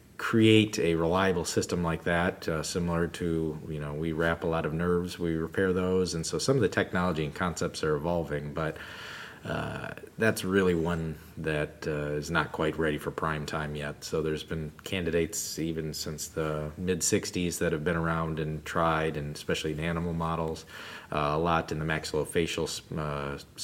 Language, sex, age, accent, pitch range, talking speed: English, male, 30-49, American, 80-85 Hz, 180 wpm